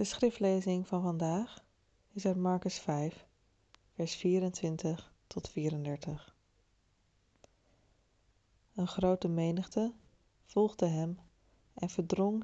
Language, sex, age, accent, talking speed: Dutch, female, 20-39, Dutch, 90 wpm